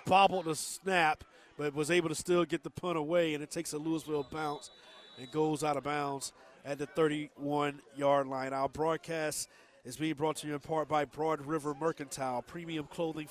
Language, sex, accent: English, male, American